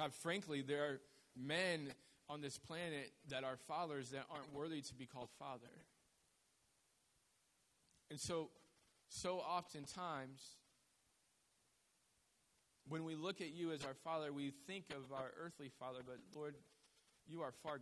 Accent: American